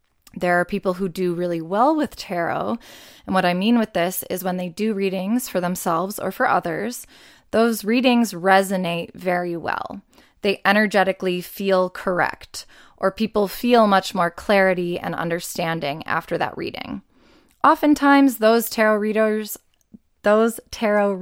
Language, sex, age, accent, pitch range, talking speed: English, female, 20-39, American, 180-225 Hz, 140 wpm